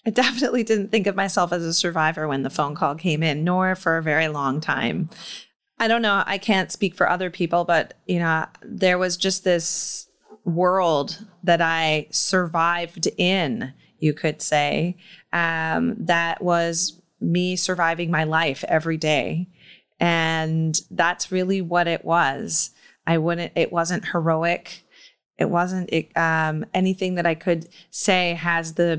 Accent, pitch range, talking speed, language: American, 165-190 Hz, 155 wpm, English